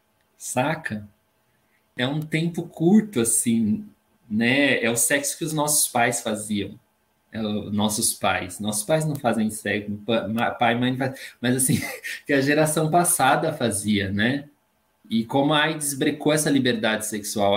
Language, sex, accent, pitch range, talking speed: Portuguese, male, Brazilian, 110-150 Hz, 135 wpm